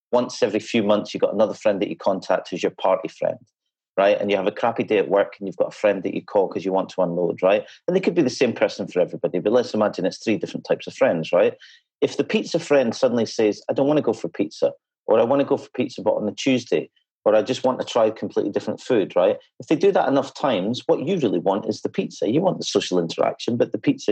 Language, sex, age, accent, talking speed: English, male, 40-59, British, 280 wpm